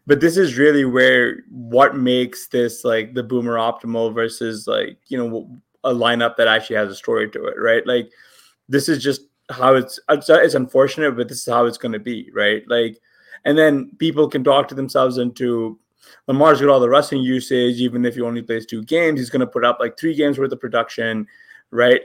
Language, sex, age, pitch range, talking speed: English, male, 20-39, 115-135 Hz, 210 wpm